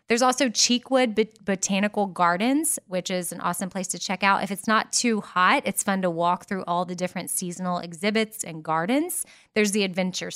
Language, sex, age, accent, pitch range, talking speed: English, female, 20-39, American, 180-230 Hz, 190 wpm